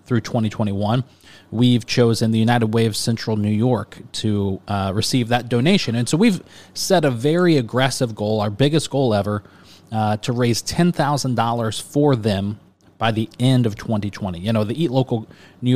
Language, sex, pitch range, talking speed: English, male, 105-130 Hz, 170 wpm